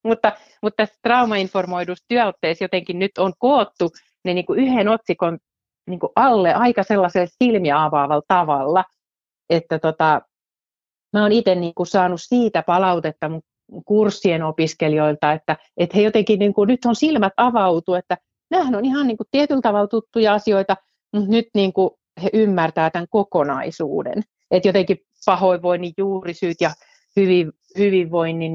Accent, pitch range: native, 160-205 Hz